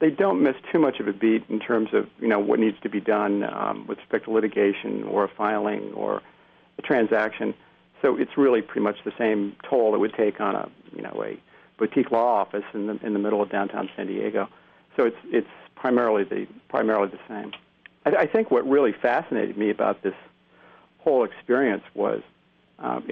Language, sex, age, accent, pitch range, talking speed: English, male, 50-69, American, 105-120 Hz, 200 wpm